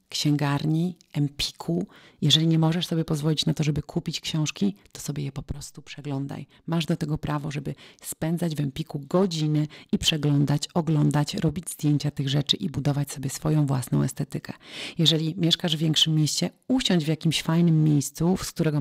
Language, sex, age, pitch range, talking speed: Polish, female, 40-59, 145-170 Hz, 165 wpm